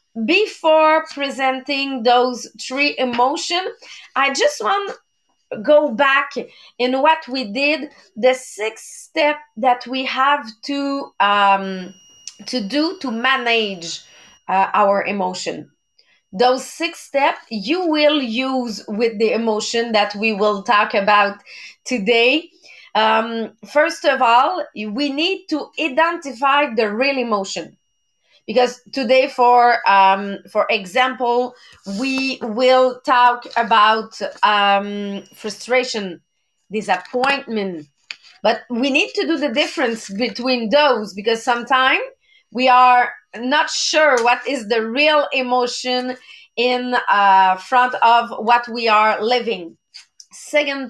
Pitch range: 215-280 Hz